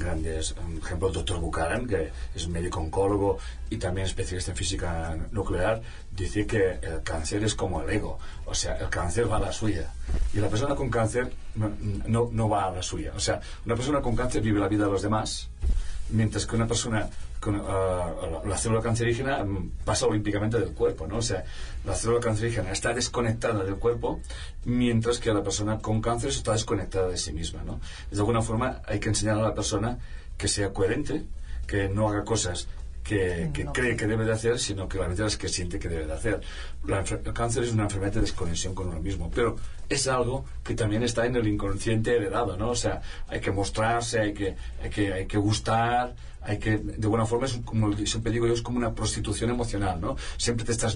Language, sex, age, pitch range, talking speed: Spanish, male, 40-59, 85-115 Hz, 205 wpm